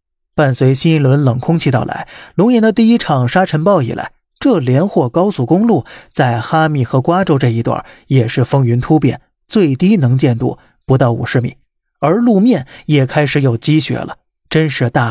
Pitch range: 130-170 Hz